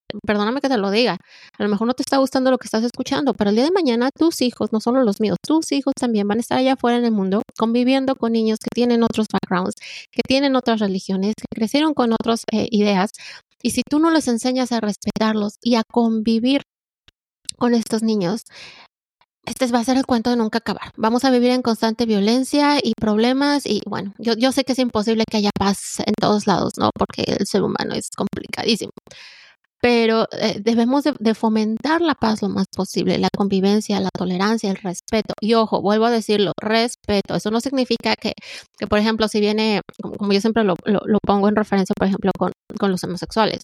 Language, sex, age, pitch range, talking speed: Spanish, female, 20-39, 200-240 Hz, 210 wpm